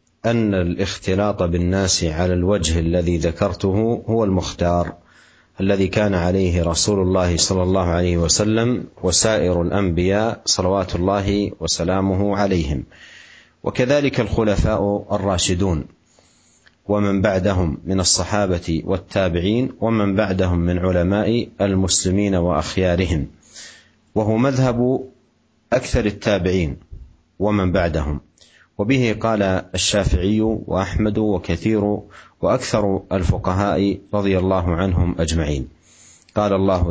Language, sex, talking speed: Indonesian, male, 95 wpm